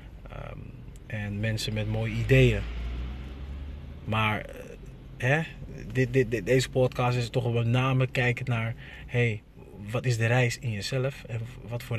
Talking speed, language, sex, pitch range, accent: 160 wpm, Dutch, male, 110-130 Hz, Dutch